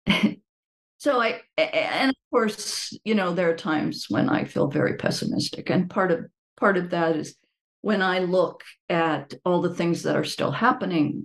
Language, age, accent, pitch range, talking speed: English, 50-69, American, 170-250 Hz, 175 wpm